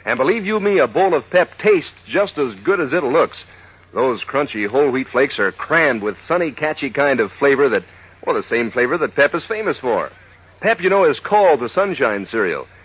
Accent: American